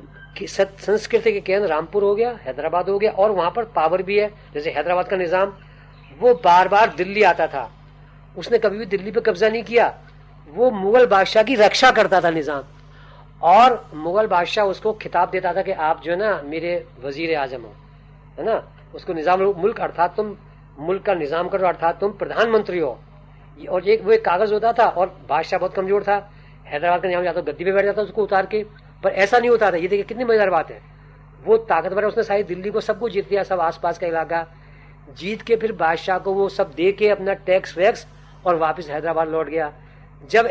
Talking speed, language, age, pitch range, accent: 205 wpm, Hindi, 40-59, 155-210 Hz, native